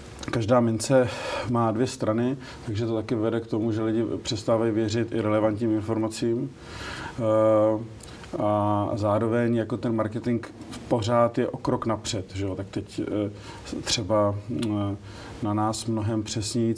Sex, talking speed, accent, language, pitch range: male, 130 wpm, native, Czech, 105-115 Hz